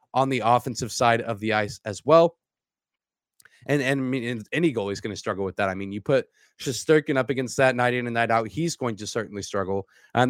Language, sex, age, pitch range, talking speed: English, male, 30-49, 115-145 Hz, 235 wpm